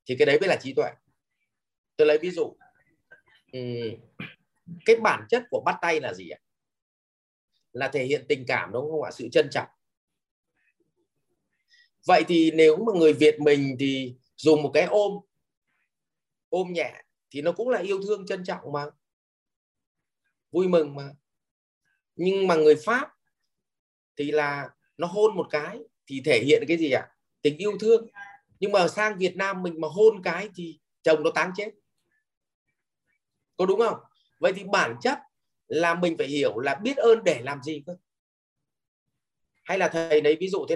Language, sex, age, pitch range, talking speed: English, male, 20-39, 150-230 Hz, 170 wpm